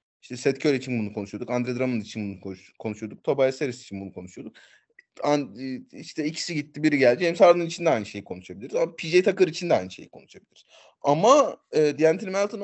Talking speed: 195 wpm